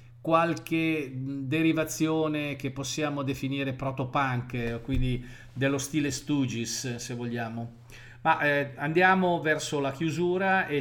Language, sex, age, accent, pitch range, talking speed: Italian, male, 50-69, native, 120-155 Hz, 105 wpm